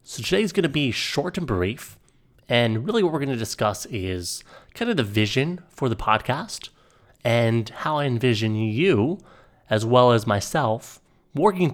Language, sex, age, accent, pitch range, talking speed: English, male, 30-49, American, 105-145 Hz, 170 wpm